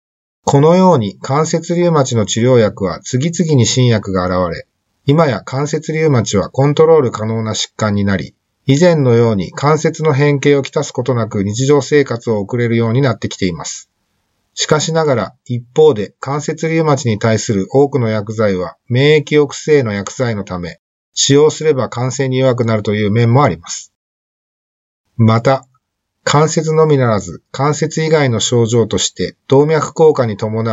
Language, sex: Japanese, male